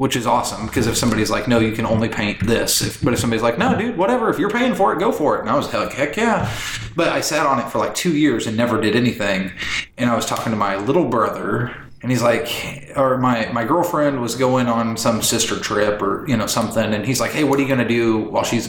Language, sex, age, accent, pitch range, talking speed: English, male, 20-39, American, 110-135 Hz, 270 wpm